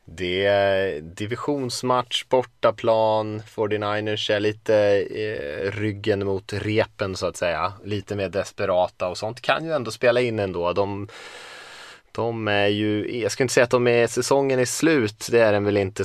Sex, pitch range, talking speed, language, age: male, 90-115 Hz, 155 wpm, Swedish, 20-39